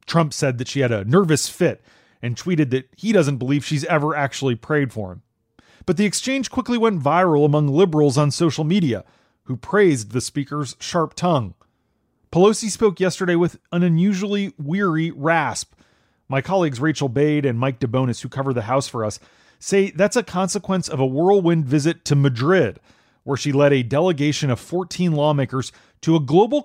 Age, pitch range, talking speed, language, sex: 30-49, 130-175 Hz, 180 wpm, English, male